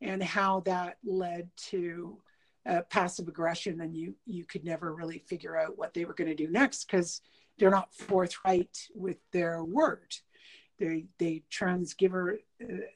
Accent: American